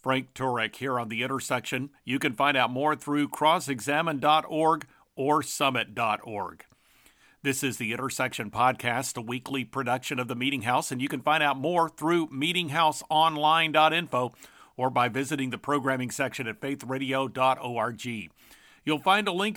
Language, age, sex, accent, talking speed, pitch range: English, 50-69, male, American, 145 wpm, 130-155 Hz